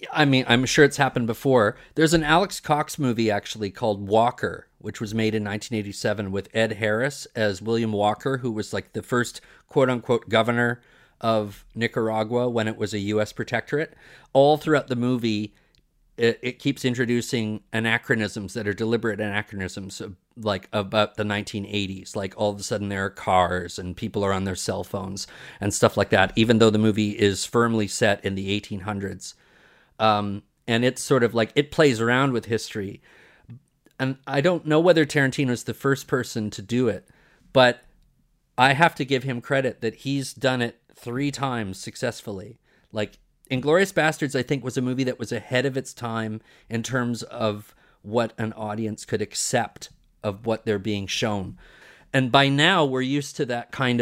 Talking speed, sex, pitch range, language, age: 180 wpm, male, 105-130 Hz, English, 40-59